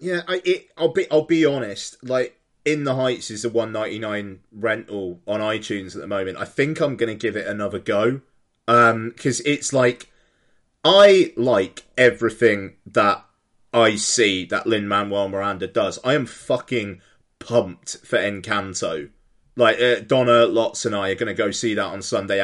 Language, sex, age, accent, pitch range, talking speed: English, male, 20-39, British, 110-155 Hz, 170 wpm